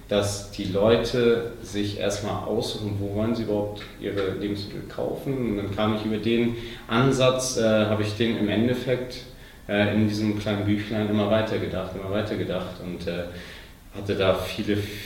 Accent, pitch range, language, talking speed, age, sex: German, 95-110 Hz, German, 160 wpm, 30-49, male